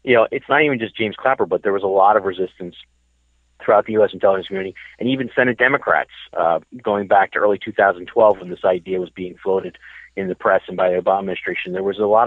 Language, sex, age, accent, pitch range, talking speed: English, male, 40-59, American, 90-115 Hz, 235 wpm